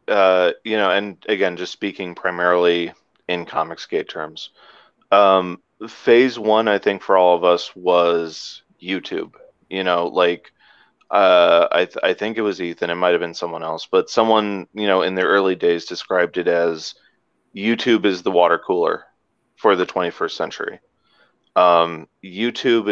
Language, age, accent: English, 30-49, American